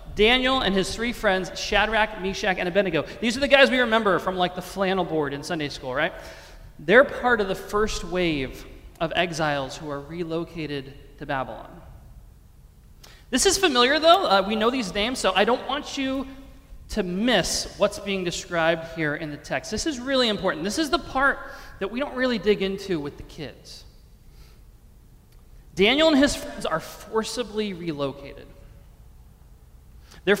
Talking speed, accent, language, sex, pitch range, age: 170 wpm, American, English, male, 165-230 Hz, 30-49